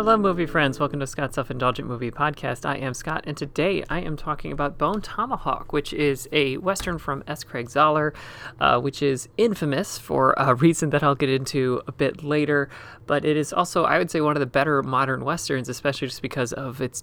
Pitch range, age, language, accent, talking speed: 125-150 Hz, 30-49, English, American, 210 wpm